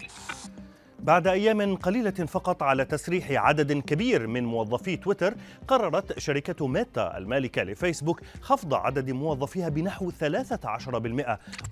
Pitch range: 120-180 Hz